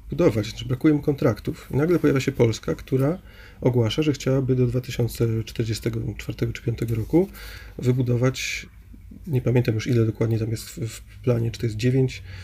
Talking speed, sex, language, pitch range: 150 wpm, male, Polish, 115-130 Hz